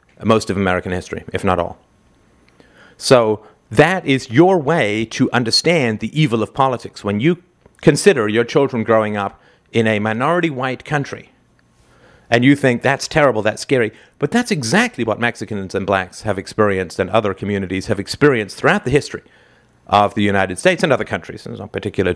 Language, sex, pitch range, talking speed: English, male, 100-145 Hz, 175 wpm